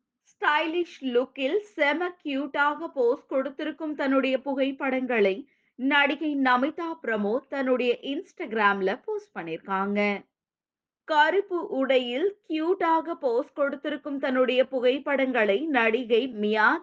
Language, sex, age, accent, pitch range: Tamil, female, 20-39, native, 235-315 Hz